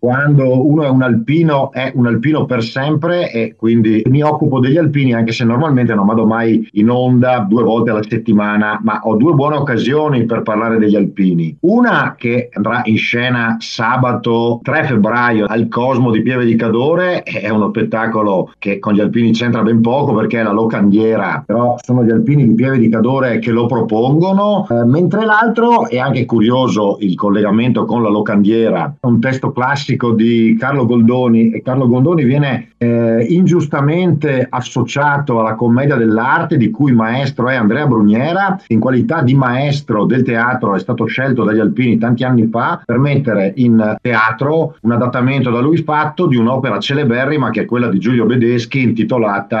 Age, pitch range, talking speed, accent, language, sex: 50-69, 110-135 Hz, 170 wpm, native, Italian, male